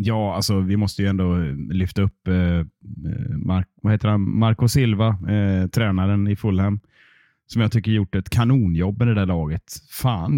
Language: Swedish